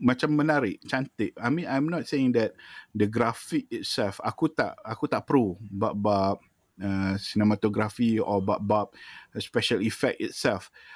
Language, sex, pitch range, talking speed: Malay, male, 105-130 Hz, 155 wpm